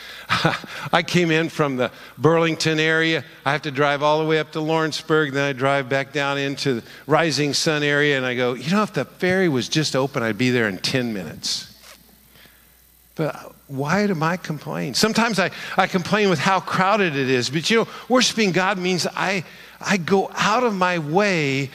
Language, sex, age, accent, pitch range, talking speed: English, male, 50-69, American, 130-185 Hz, 195 wpm